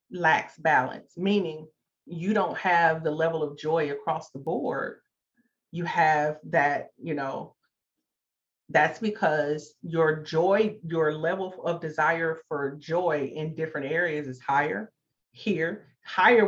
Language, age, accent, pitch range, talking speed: English, 40-59, American, 150-185 Hz, 125 wpm